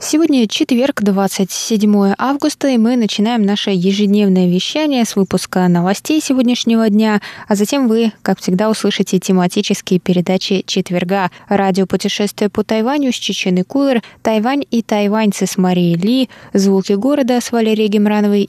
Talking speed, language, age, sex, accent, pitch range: 135 wpm, Russian, 20-39, female, native, 185-225 Hz